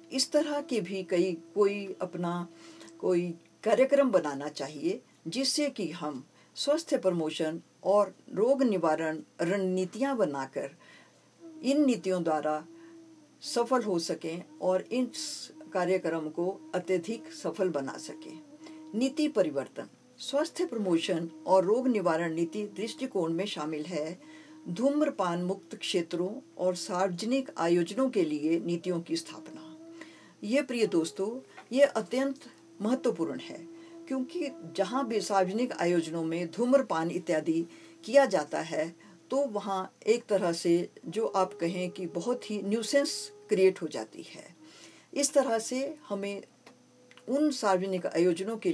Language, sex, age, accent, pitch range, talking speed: Hindi, female, 50-69, native, 175-275 Hz, 125 wpm